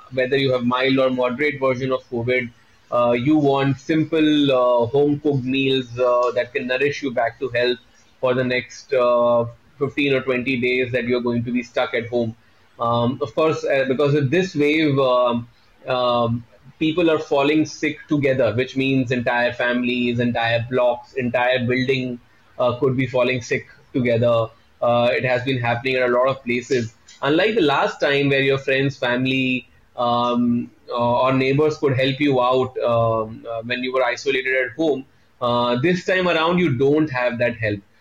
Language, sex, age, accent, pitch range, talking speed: English, male, 20-39, Indian, 120-140 Hz, 175 wpm